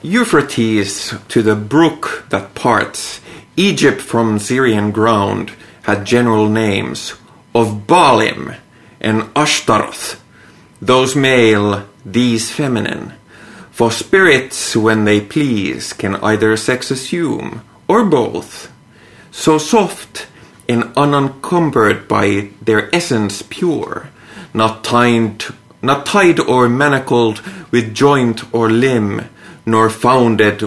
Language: Finnish